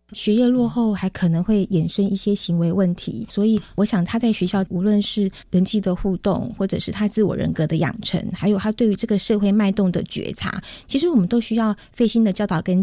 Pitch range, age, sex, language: 185-220 Hz, 20-39, female, Chinese